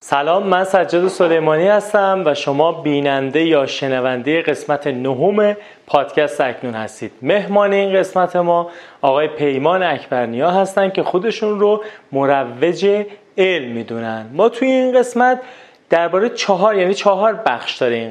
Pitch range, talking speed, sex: 140-185 Hz, 135 wpm, male